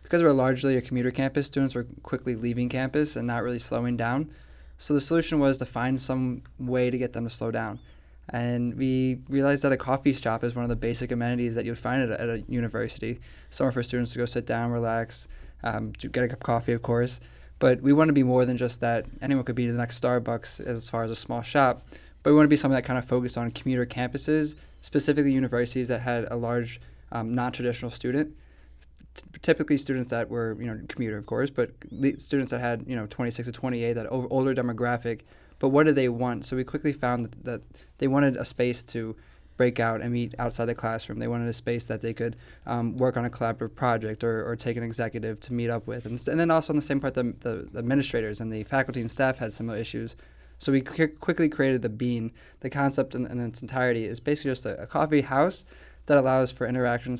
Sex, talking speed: male, 235 wpm